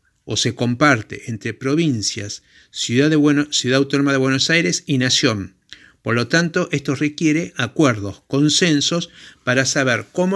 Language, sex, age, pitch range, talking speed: Spanish, male, 50-69, 125-155 Hz, 145 wpm